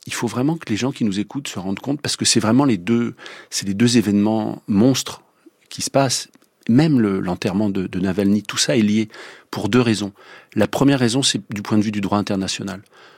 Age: 40-59